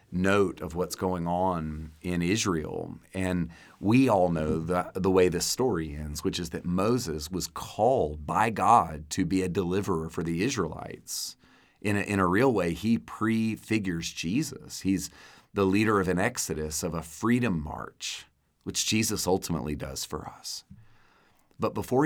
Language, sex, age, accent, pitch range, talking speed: English, male, 40-59, American, 85-100 Hz, 160 wpm